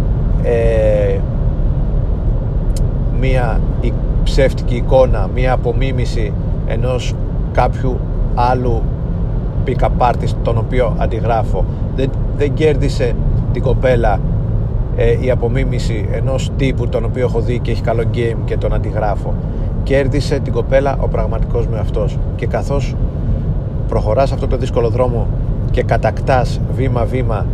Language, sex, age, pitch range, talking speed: Greek, male, 40-59, 110-130 Hz, 110 wpm